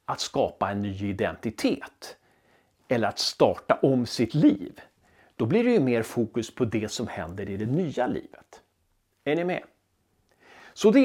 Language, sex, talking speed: Swedish, male, 165 wpm